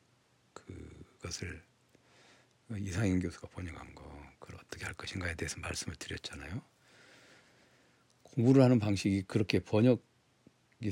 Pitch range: 95-130 Hz